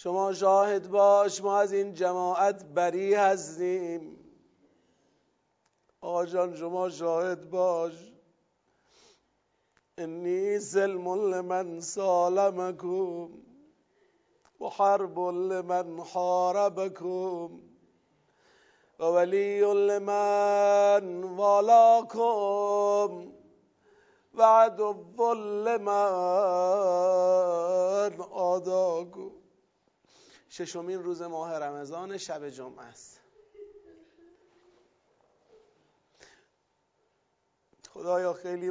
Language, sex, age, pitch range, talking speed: Persian, male, 50-69, 180-205 Hz, 55 wpm